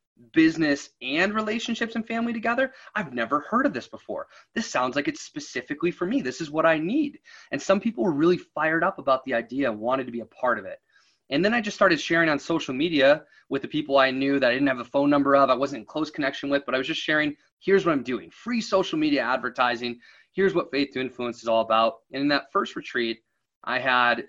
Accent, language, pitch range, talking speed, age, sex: American, English, 125-210 Hz, 240 wpm, 20-39, male